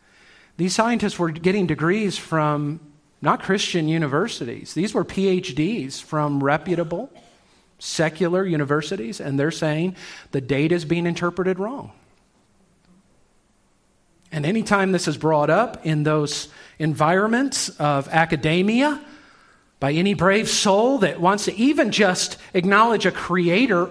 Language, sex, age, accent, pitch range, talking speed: English, male, 40-59, American, 160-225 Hz, 120 wpm